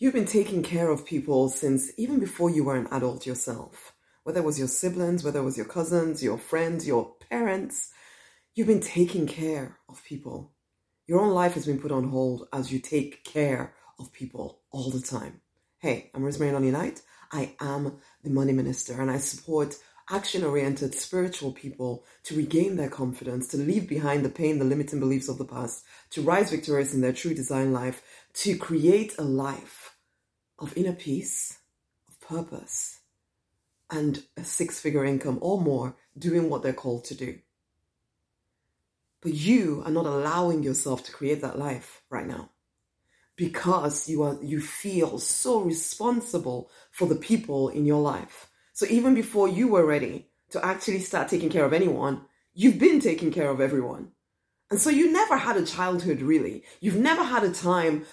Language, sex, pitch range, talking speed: English, female, 135-175 Hz, 175 wpm